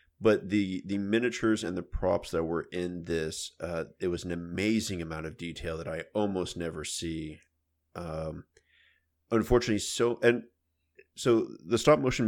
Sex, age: male, 30-49